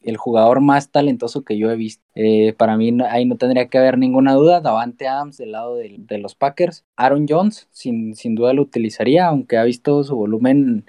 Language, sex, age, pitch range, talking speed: Spanish, male, 20-39, 110-135 Hz, 210 wpm